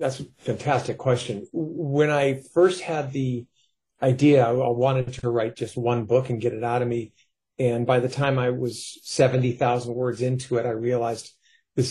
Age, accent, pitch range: 40-59, American, 120-135 Hz